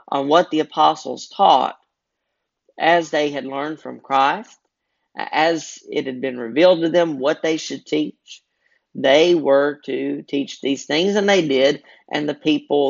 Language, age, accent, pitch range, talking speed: English, 40-59, American, 130-160 Hz, 160 wpm